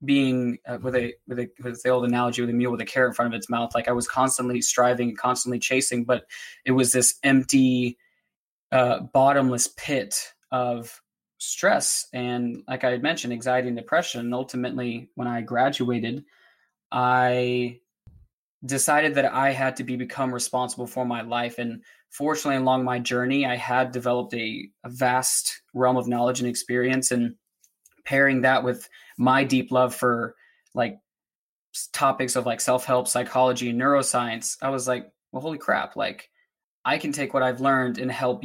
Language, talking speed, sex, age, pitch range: English, 165 wpm, male, 20-39, 120-135 Hz